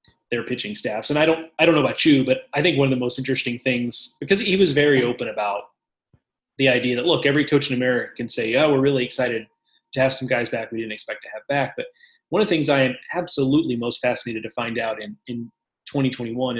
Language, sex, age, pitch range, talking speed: English, male, 30-49, 120-145 Hz, 240 wpm